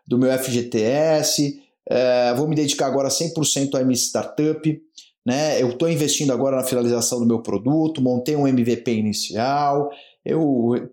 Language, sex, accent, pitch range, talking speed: Portuguese, male, Brazilian, 130-170 Hz, 155 wpm